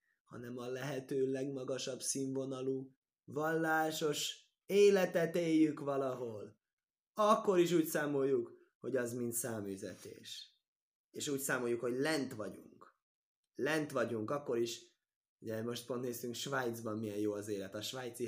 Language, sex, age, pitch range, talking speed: Hungarian, male, 20-39, 120-165 Hz, 125 wpm